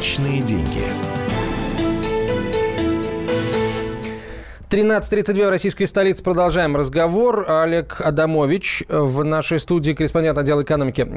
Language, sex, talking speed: Russian, male, 75 wpm